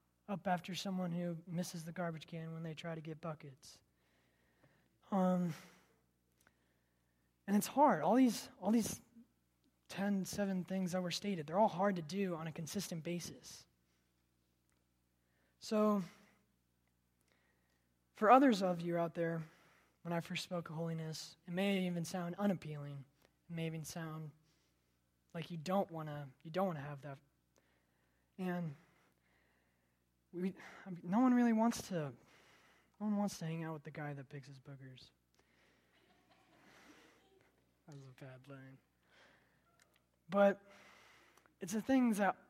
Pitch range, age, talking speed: 135-195 Hz, 20-39, 140 wpm